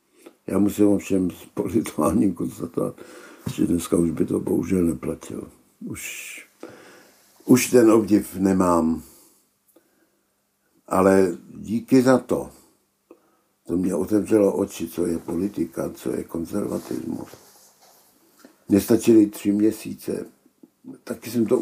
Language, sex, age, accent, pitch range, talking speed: Czech, male, 60-79, native, 95-115 Hz, 105 wpm